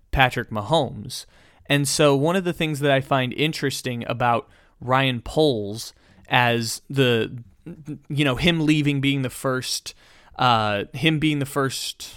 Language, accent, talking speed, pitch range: English, American, 145 wpm, 120-145 Hz